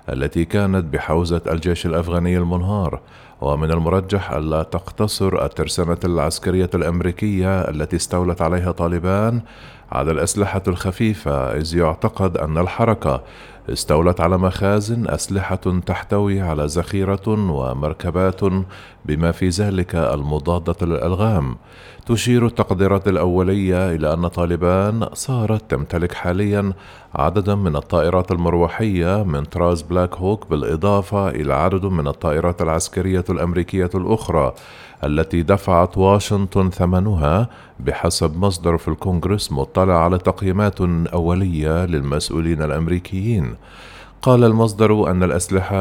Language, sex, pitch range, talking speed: Arabic, male, 85-100 Hz, 105 wpm